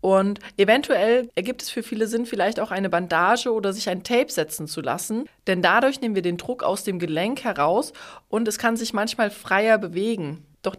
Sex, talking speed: female, 200 wpm